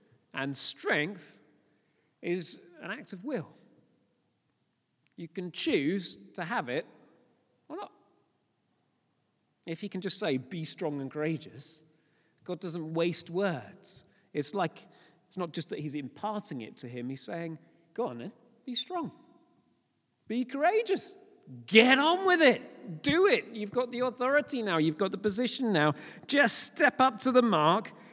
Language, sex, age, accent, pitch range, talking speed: English, male, 40-59, British, 165-275 Hz, 150 wpm